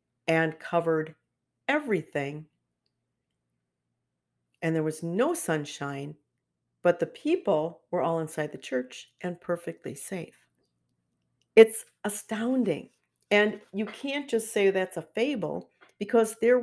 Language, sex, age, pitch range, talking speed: English, female, 50-69, 145-190 Hz, 110 wpm